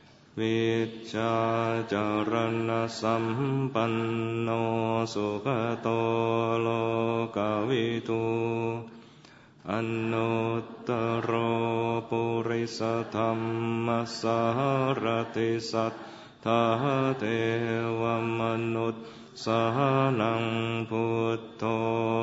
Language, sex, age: English, male, 30-49